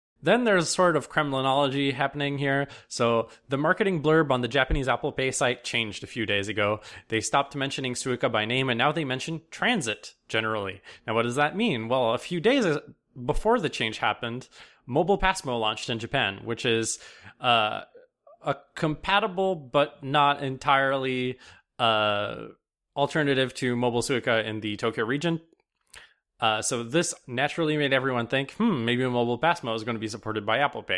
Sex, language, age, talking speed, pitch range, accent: male, English, 20-39, 170 wpm, 115-150 Hz, American